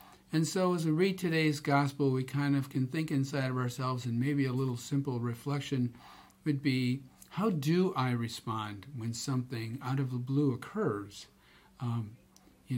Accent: American